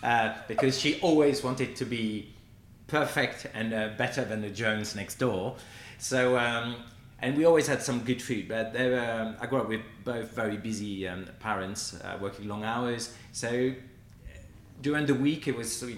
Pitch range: 100-125 Hz